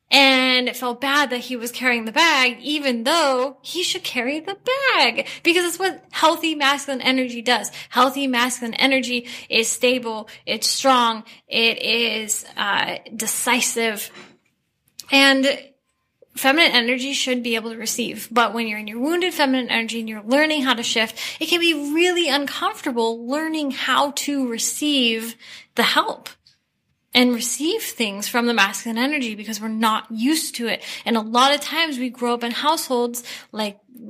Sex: female